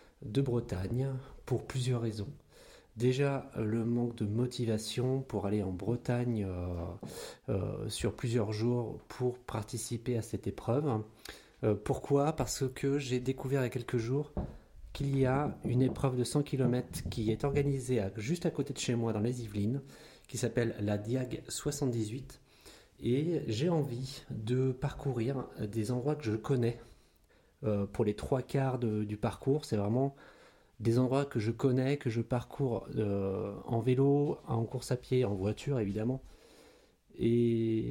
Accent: French